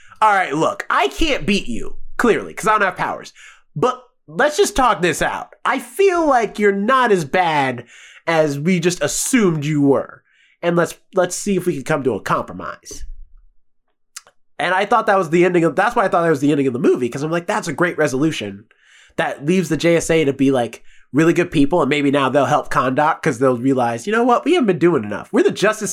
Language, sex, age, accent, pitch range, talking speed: English, male, 20-39, American, 150-230 Hz, 230 wpm